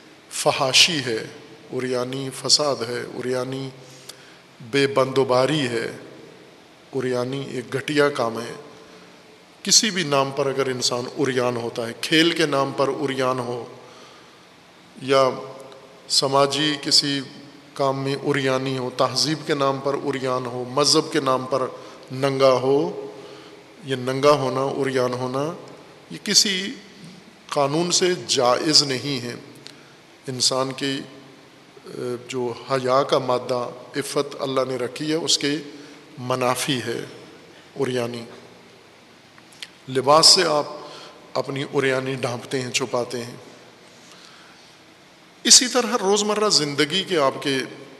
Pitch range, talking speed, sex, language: 130-150 Hz, 115 wpm, male, Urdu